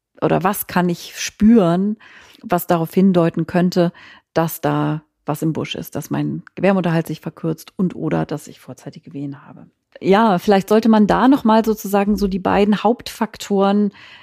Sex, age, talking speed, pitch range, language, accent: female, 40-59, 165 wpm, 175-215 Hz, German, German